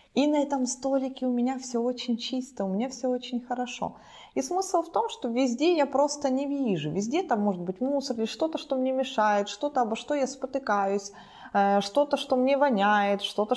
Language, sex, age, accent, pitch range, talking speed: Russian, female, 20-39, native, 215-275 Hz, 195 wpm